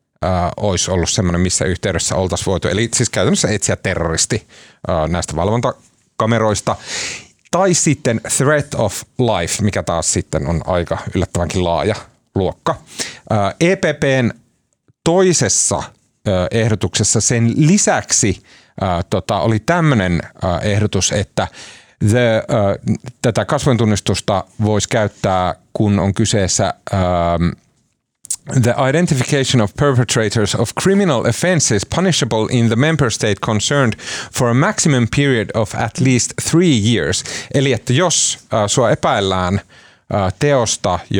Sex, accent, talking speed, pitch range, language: male, native, 105 wpm, 95-130 Hz, Finnish